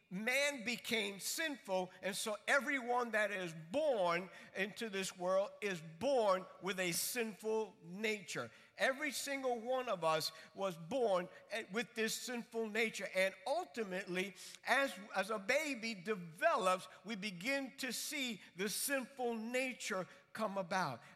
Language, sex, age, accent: English, male, 50-69, American